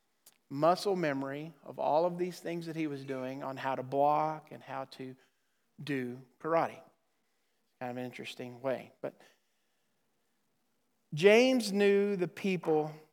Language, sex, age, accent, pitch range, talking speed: English, male, 50-69, American, 150-185 Hz, 135 wpm